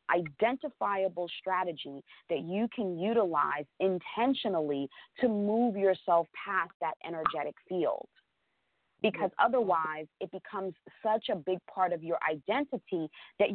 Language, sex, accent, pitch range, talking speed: English, female, American, 165-215 Hz, 115 wpm